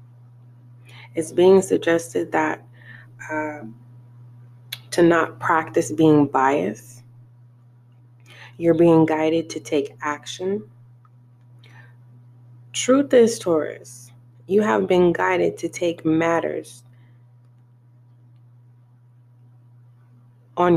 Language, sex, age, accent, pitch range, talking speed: English, female, 20-39, American, 120-165 Hz, 80 wpm